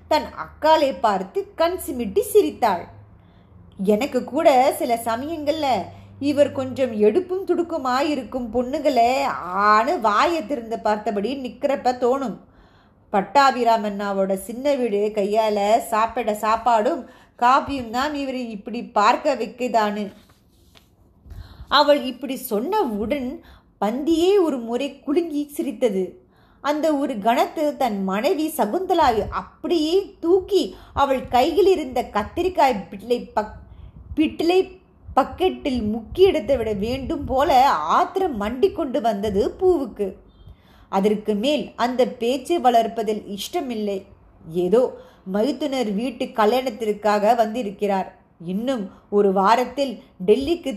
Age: 20-39